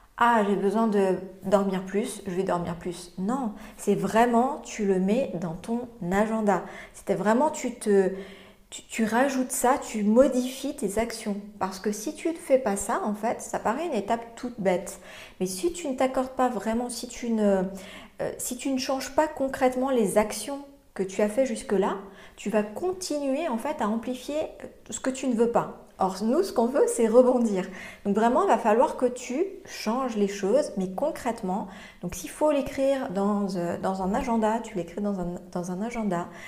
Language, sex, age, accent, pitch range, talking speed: French, female, 40-59, French, 200-250 Hz, 190 wpm